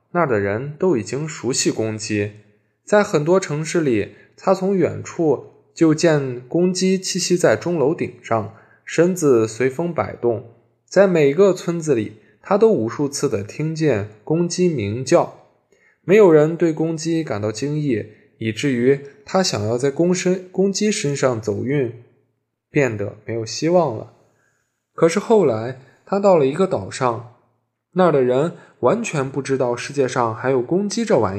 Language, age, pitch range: Chinese, 20-39, 115-170 Hz